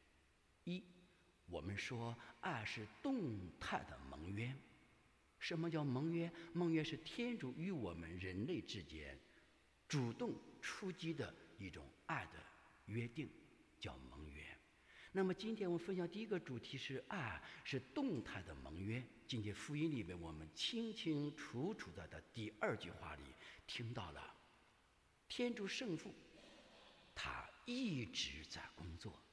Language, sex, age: English, male, 60-79